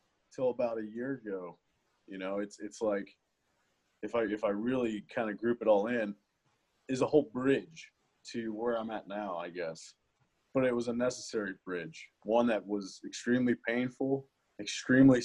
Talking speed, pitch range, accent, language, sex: 170 wpm, 100-120 Hz, American, English, male